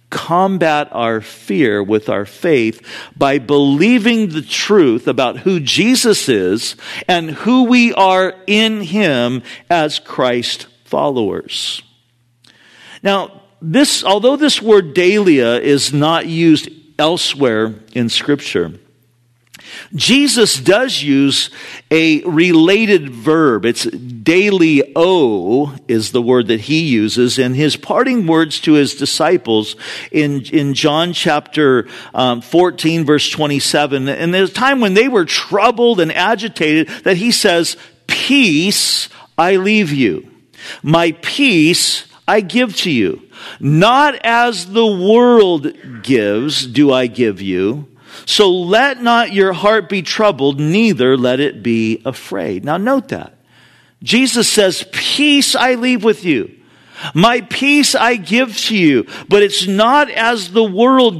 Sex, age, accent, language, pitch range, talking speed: male, 50-69, American, English, 140-220 Hz, 130 wpm